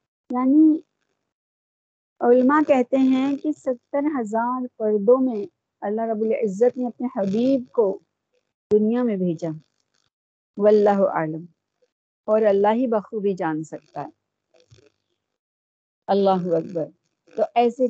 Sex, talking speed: female, 105 wpm